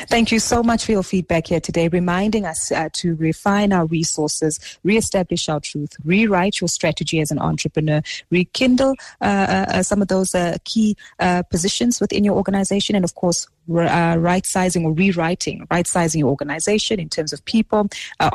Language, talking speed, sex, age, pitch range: English, 175 wpm, female, 30-49, 155-195 Hz